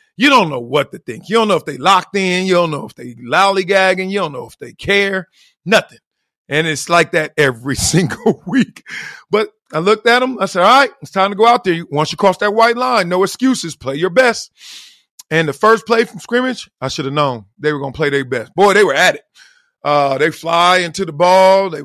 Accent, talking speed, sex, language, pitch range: American, 240 wpm, male, English, 155-220 Hz